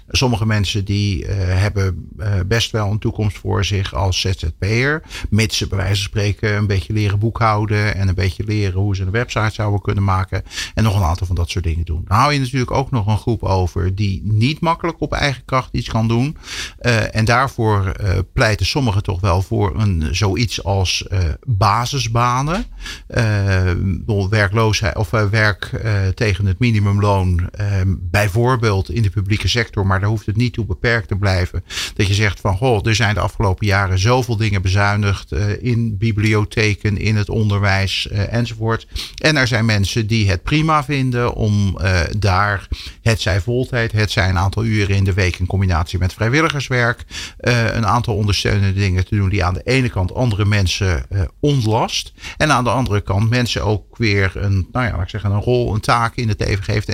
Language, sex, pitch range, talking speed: Dutch, male, 95-115 Hz, 190 wpm